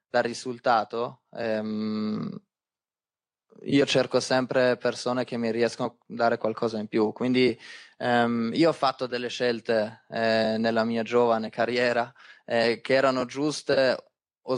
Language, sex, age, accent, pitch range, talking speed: Italian, male, 20-39, native, 115-125 Hz, 130 wpm